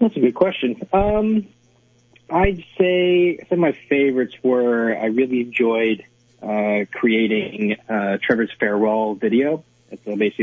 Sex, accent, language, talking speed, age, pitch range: male, American, English, 140 wpm, 20-39, 105-120 Hz